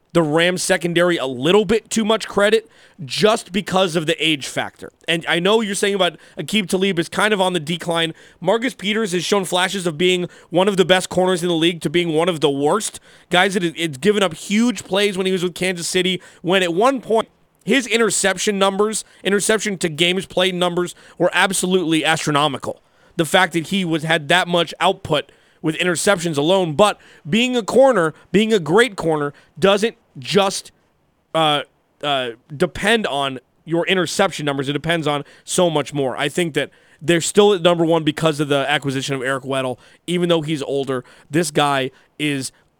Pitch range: 155-195 Hz